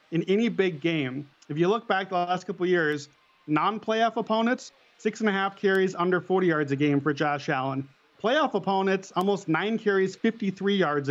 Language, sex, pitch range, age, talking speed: English, male, 160-195 Hz, 30-49, 185 wpm